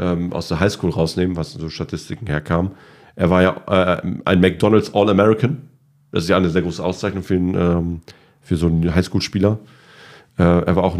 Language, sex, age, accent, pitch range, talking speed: German, male, 40-59, German, 80-95 Hz, 180 wpm